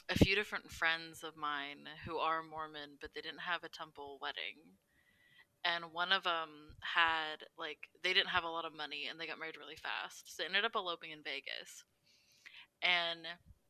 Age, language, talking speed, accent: 20-39, English, 190 wpm, American